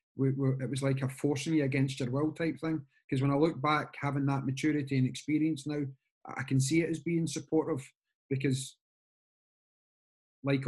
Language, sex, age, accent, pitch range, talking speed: English, male, 30-49, British, 135-160 Hz, 185 wpm